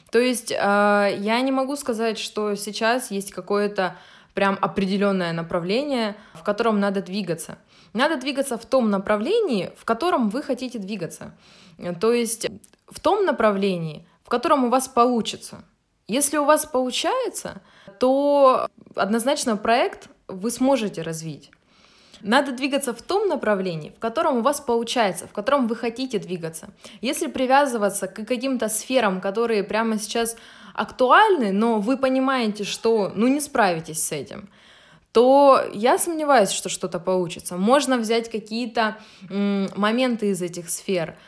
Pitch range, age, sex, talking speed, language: 195-245 Hz, 20-39, female, 135 wpm, Russian